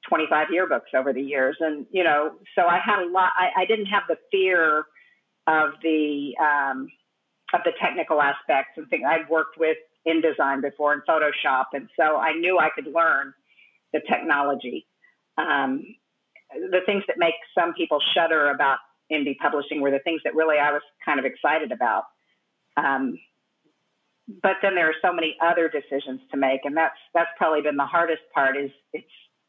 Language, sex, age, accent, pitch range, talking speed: English, female, 50-69, American, 150-185 Hz, 175 wpm